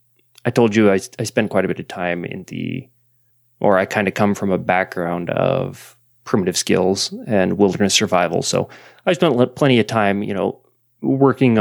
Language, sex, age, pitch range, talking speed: English, male, 20-39, 105-125 Hz, 185 wpm